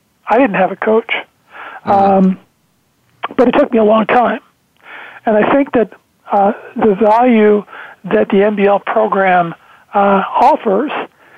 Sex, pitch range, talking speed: male, 195-225 Hz, 135 wpm